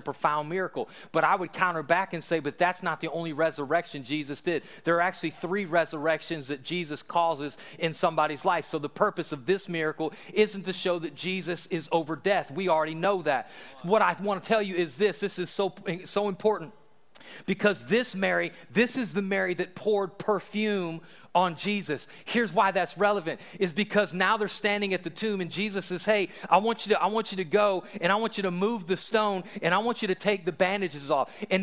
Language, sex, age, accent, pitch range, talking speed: English, male, 40-59, American, 175-225 Hz, 215 wpm